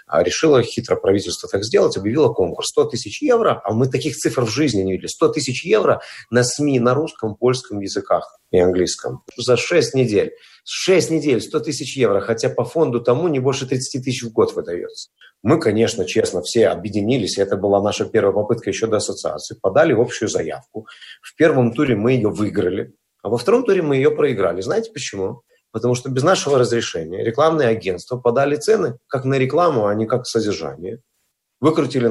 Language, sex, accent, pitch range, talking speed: Russian, male, native, 110-155 Hz, 180 wpm